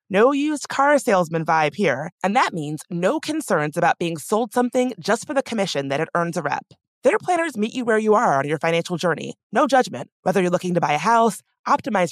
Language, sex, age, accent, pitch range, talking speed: English, female, 30-49, American, 175-255 Hz, 225 wpm